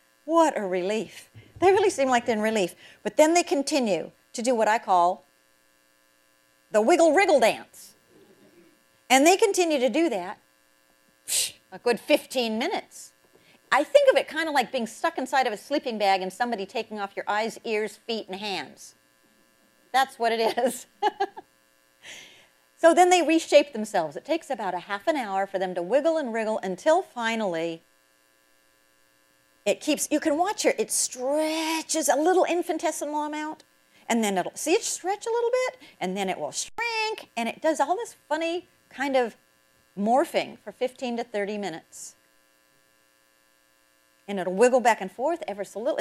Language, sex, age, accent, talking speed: English, female, 50-69, American, 170 wpm